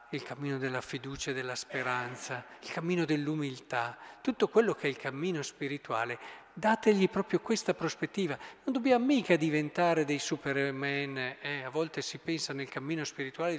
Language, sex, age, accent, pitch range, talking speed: Italian, male, 40-59, native, 135-170 Hz, 155 wpm